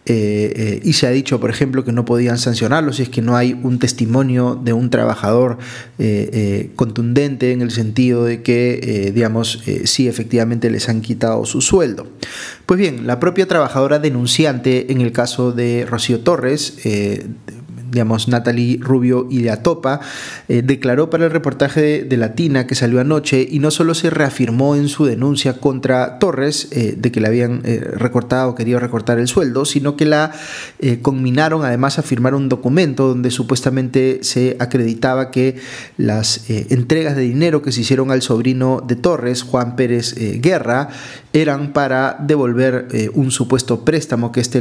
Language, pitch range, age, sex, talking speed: Spanish, 120-135 Hz, 20-39, male, 175 wpm